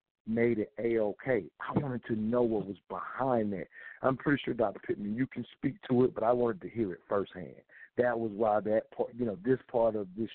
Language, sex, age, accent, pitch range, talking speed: English, male, 50-69, American, 100-115 Hz, 225 wpm